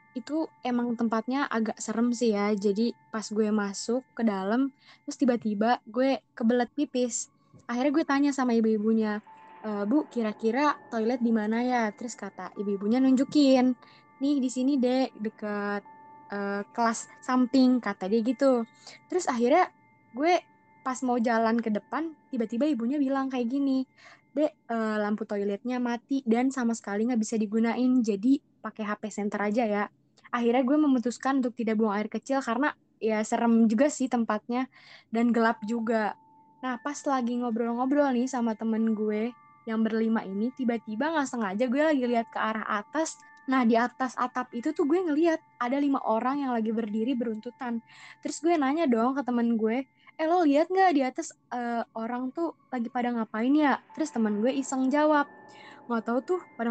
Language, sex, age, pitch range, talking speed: Indonesian, female, 20-39, 225-275 Hz, 165 wpm